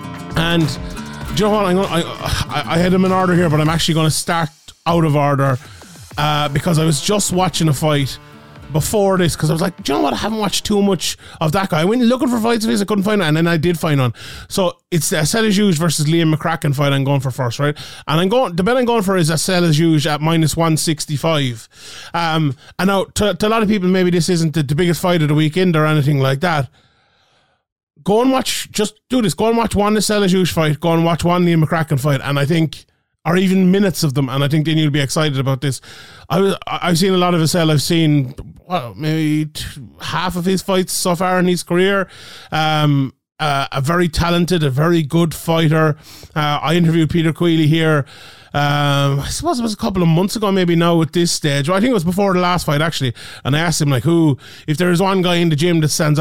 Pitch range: 145-180 Hz